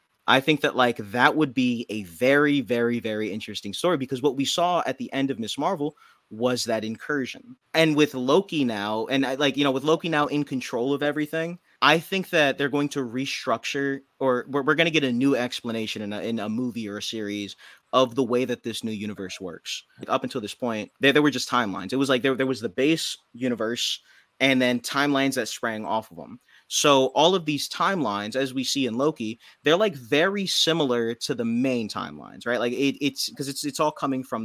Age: 20-39